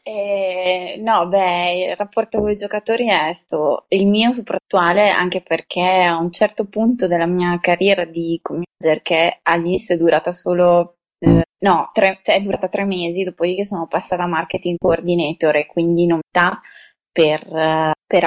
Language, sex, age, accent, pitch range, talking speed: Italian, female, 20-39, native, 170-190 Hz, 160 wpm